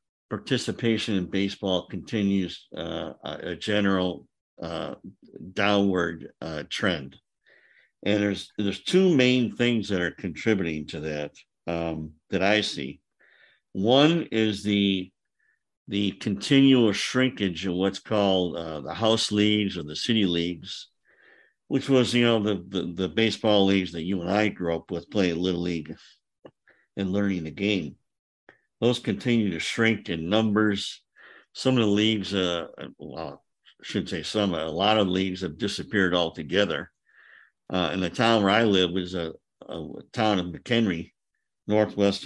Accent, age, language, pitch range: American, 50-69, English, 90-105 Hz